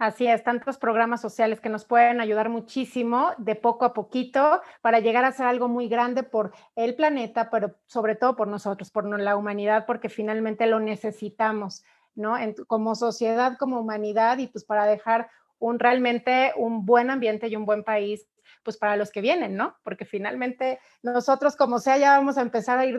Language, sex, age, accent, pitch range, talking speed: Spanish, female, 30-49, Mexican, 215-255 Hz, 190 wpm